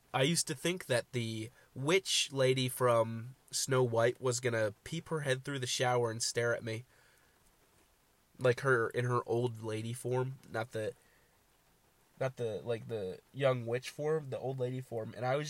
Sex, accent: male, American